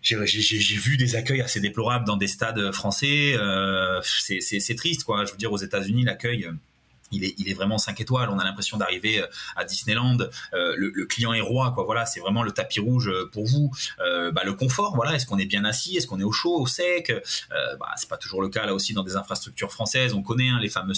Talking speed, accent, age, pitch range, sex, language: 250 wpm, French, 30-49, 100-125 Hz, male, French